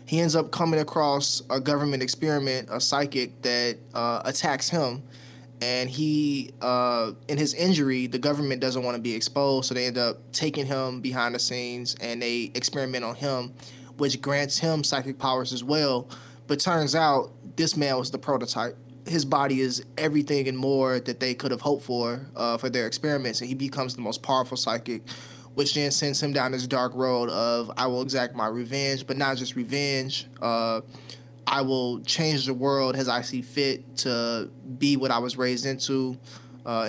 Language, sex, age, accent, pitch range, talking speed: English, male, 20-39, American, 125-140 Hz, 185 wpm